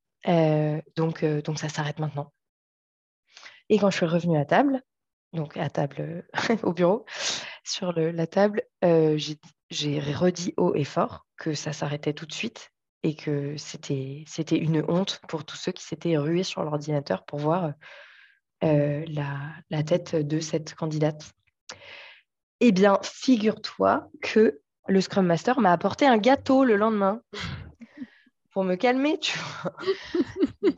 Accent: French